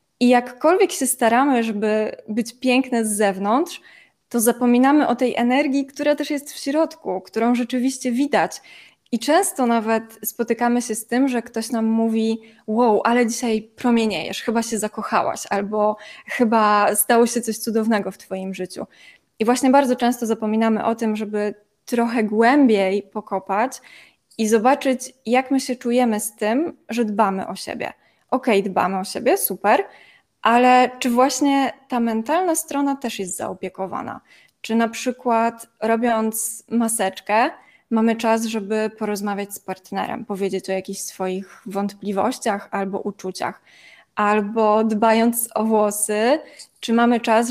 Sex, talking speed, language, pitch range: female, 140 wpm, Polish, 210-250 Hz